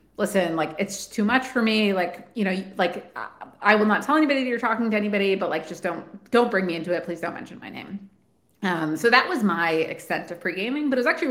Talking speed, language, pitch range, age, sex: 250 wpm, English, 175-215 Hz, 30-49, female